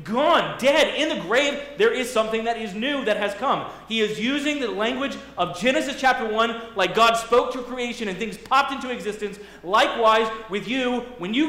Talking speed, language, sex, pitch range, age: 200 wpm, English, male, 190-245 Hz, 30-49